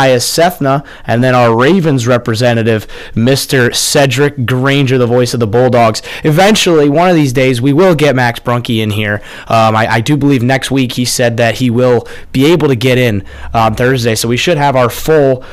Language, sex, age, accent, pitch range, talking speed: English, male, 20-39, American, 115-145 Hz, 205 wpm